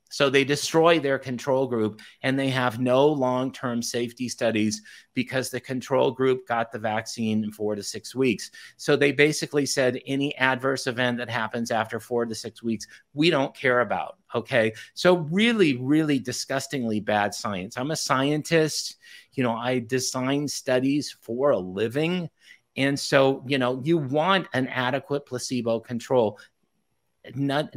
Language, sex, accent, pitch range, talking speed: English, male, American, 115-140 Hz, 155 wpm